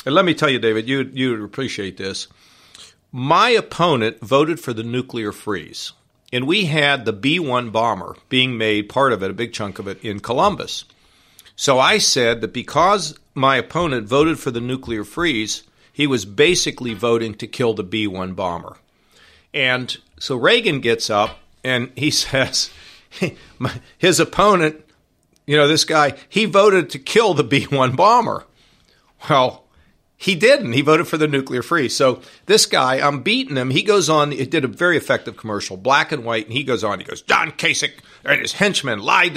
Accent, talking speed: American, 175 wpm